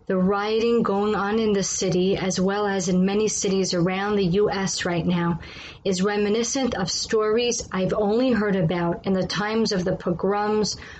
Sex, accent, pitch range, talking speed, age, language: female, American, 180-225 Hz, 175 wpm, 30-49, English